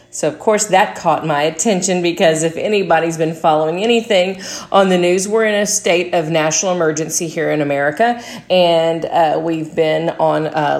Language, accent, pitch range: English, American, 165-210 Hz